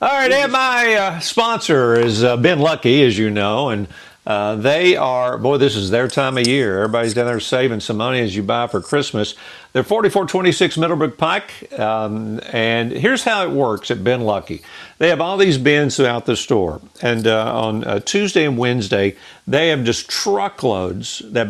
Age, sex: 50-69, male